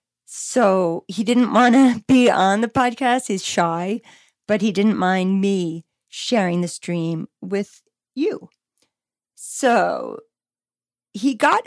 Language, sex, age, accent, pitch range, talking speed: English, female, 40-59, American, 170-220 Hz, 125 wpm